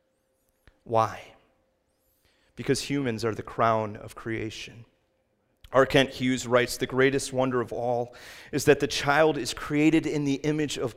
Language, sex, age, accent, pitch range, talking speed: English, male, 30-49, American, 115-155 Hz, 150 wpm